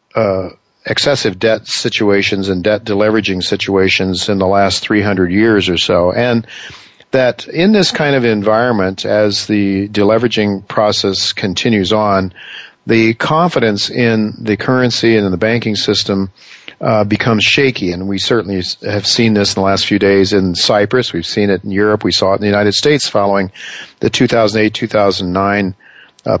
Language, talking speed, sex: English, 160 wpm, male